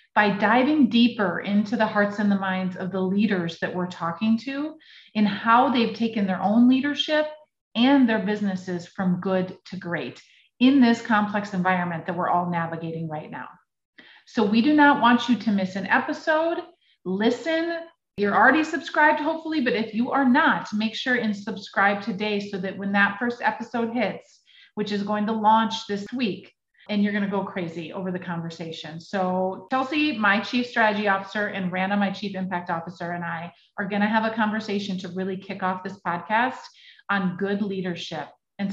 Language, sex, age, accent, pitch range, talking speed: English, female, 30-49, American, 190-230 Hz, 185 wpm